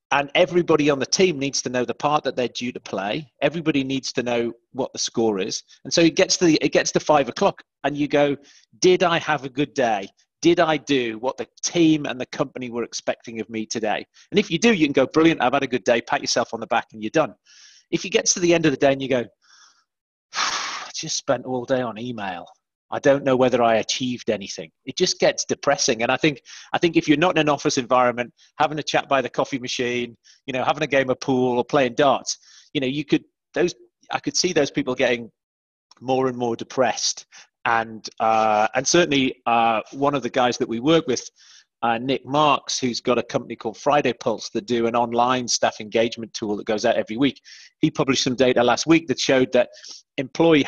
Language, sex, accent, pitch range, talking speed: English, male, British, 120-155 Hz, 235 wpm